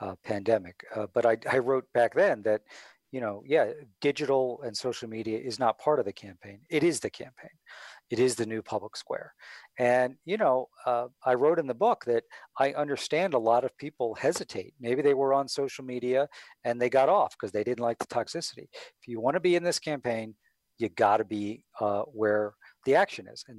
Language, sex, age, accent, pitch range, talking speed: English, male, 50-69, American, 115-150 Hz, 210 wpm